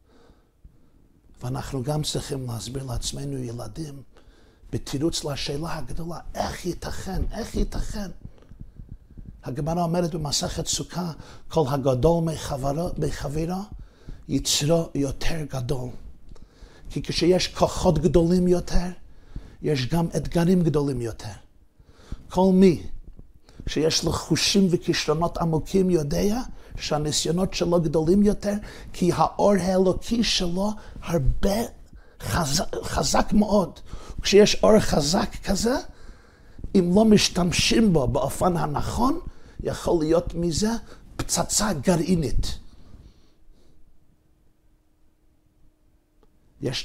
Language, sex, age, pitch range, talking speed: Hebrew, male, 50-69, 135-175 Hz, 90 wpm